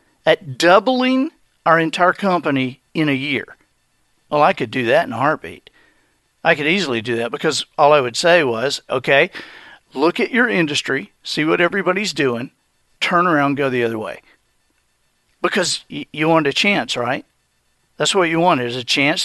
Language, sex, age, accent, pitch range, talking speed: English, male, 50-69, American, 150-195 Hz, 175 wpm